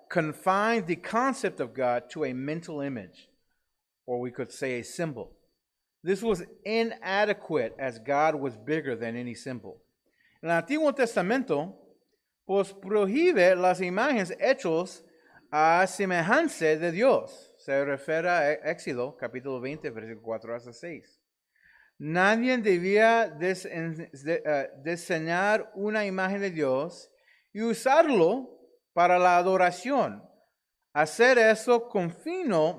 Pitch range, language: 150-215 Hz, English